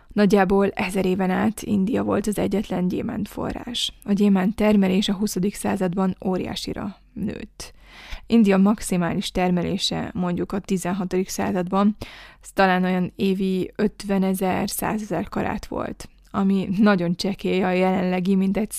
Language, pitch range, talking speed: Hungarian, 185-210 Hz, 130 wpm